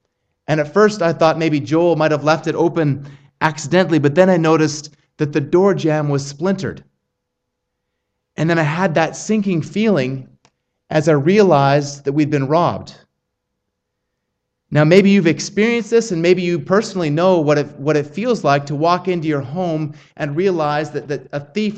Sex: male